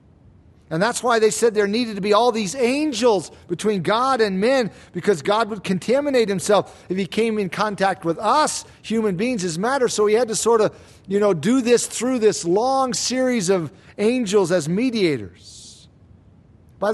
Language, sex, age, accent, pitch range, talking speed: English, male, 50-69, American, 155-210 Hz, 180 wpm